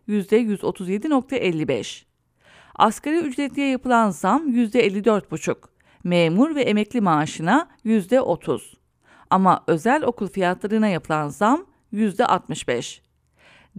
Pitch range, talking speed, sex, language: 185-265 Hz, 80 wpm, female, English